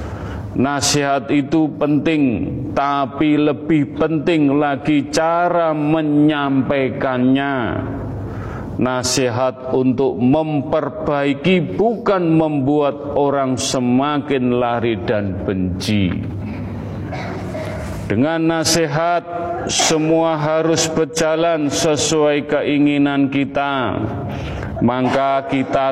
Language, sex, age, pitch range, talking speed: Indonesian, male, 40-59, 125-155 Hz, 65 wpm